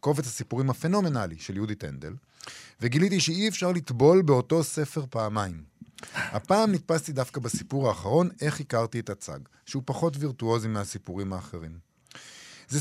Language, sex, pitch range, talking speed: Hebrew, male, 110-155 Hz, 130 wpm